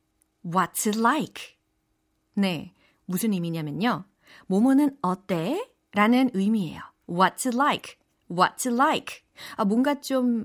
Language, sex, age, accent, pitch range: Korean, female, 30-49, native, 185-295 Hz